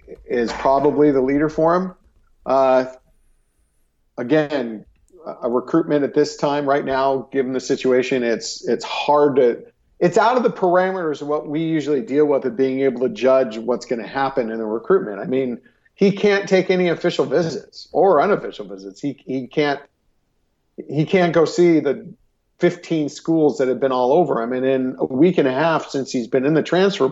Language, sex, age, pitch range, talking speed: English, male, 50-69, 130-175 Hz, 190 wpm